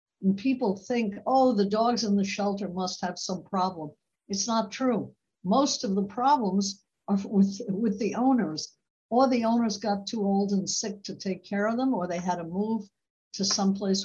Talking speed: 190 wpm